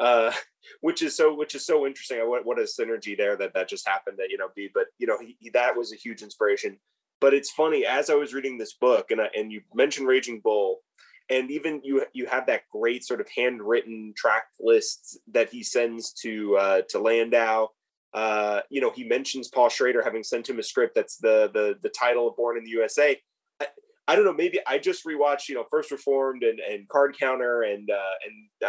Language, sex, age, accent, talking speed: English, male, 30-49, American, 225 wpm